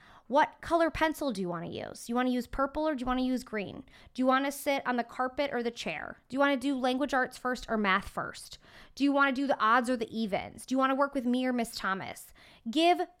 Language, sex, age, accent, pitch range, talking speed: English, female, 20-39, American, 215-285 Hz, 290 wpm